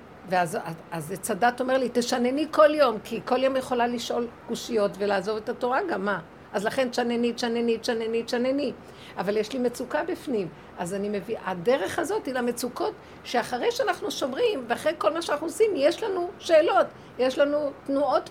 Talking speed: 165 wpm